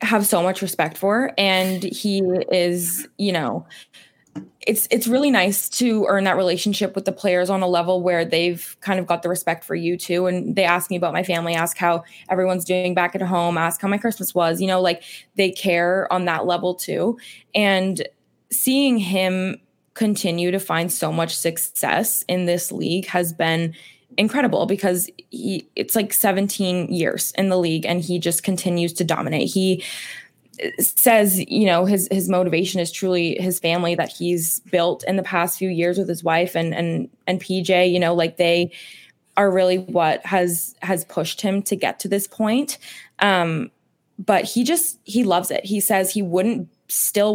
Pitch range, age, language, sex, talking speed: 175-200 Hz, 20-39, English, female, 185 wpm